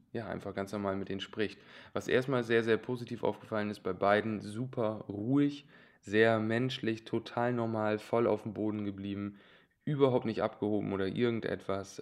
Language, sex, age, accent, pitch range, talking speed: German, male, 20-39, German, 90-105 Hz, 160 wpm